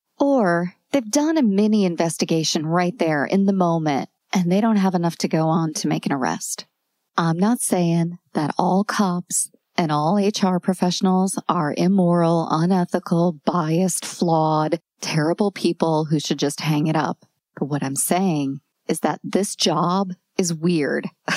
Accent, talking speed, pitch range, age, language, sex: American, 155 wpm, 160-200 Hz, 40-59, English, female